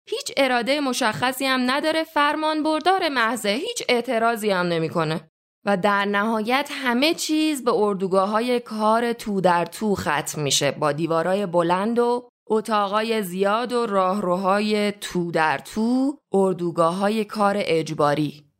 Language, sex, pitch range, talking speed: Persian, female, 185-275 Hz, 130 wpm